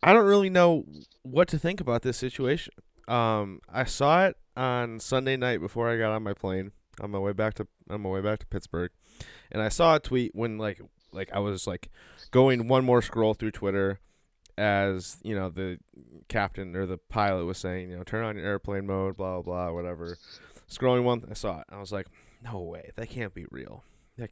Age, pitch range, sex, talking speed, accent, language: 20-39, 95-125 Hz, male, 215 wpm, American, English